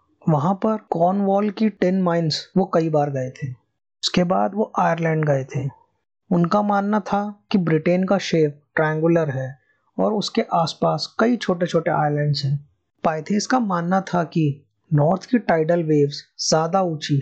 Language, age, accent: Hindi, 20-39, native